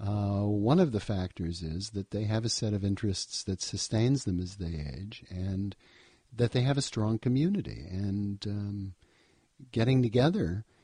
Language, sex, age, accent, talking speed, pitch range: English, male, 50-69, American, 165 wpm, 90-115 Hz